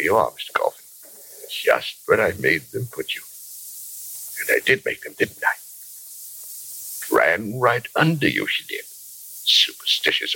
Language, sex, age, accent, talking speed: English, male, 60-79, American, 145 wpm